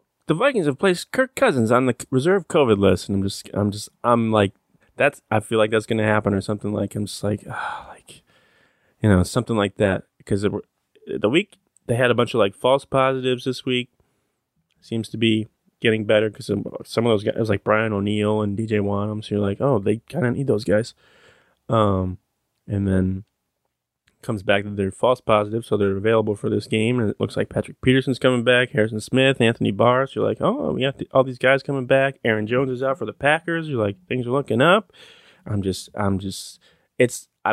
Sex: male